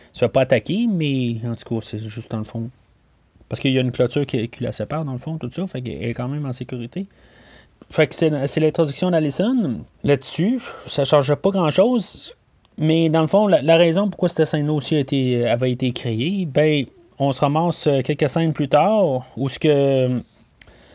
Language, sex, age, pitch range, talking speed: French, male, 30-49, 125-160 Hz, 210 wpm